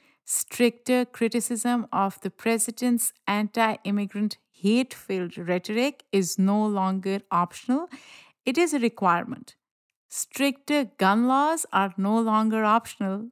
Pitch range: 195-240 Hz